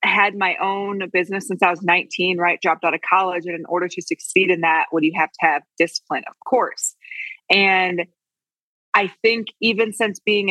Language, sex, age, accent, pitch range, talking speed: English, female, 20-39, American, 180-215 Hz, 200 wpm